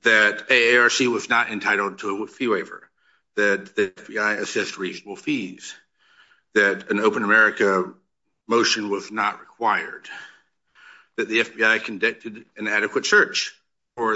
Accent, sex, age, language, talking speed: American, male, 50-69, English, 130 wpm